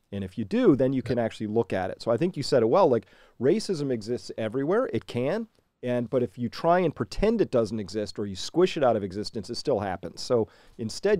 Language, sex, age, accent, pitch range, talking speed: English, male, 40-59, American, 120-175 Hz, 245 wpm